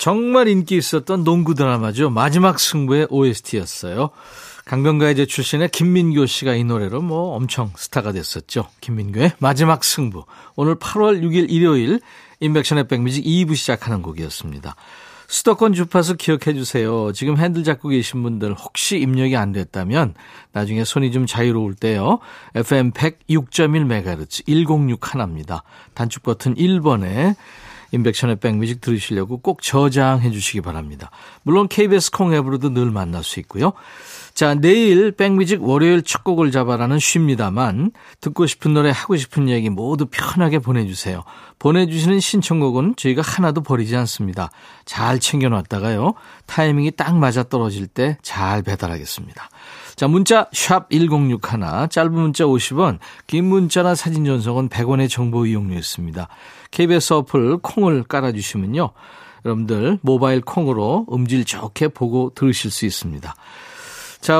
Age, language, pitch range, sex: 40-59, Korean, 115-165 Hz, male